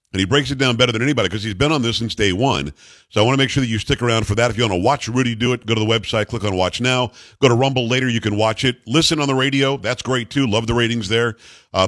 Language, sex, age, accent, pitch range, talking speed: English, male, 50-69, American, 110-130 Hz, 325 wpm